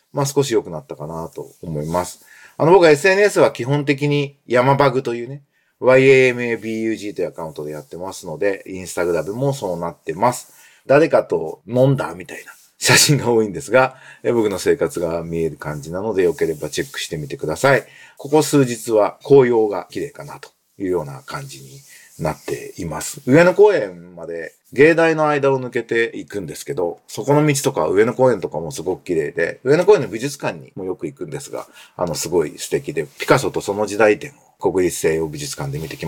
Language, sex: Japanese, male